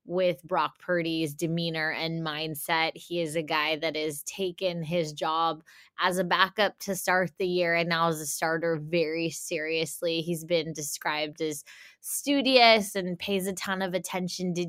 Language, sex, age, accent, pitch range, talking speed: English, female, 20-39, American, 165-185 Hz, 170 wpm